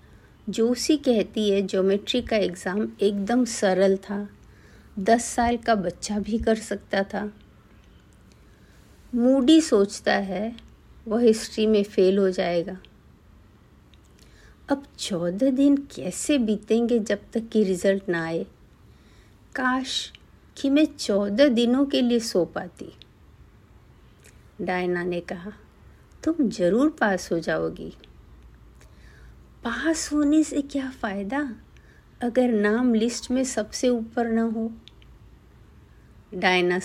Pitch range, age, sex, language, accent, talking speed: 190-240 Hz, 50-69, female, Hindi, native, 110 wpm